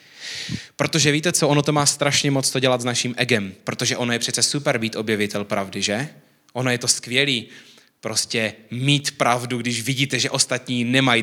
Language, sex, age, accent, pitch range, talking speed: Czech, male, 20-39, native, 110-135 Hz, 180 wpm